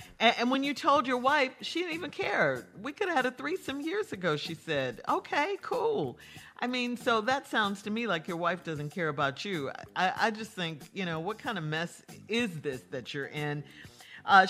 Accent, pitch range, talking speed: American, 155-230 Hz, 210 wpm